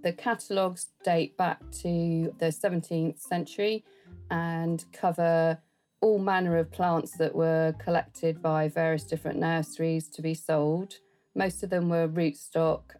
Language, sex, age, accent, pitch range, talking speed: English, female, 40-59, British, 165-180 Hz, 135 wpm